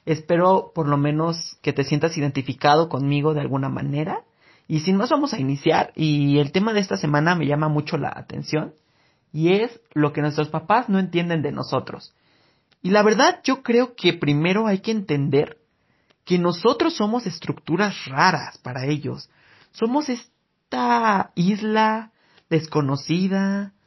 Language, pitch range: Spanish, 150-210 Hz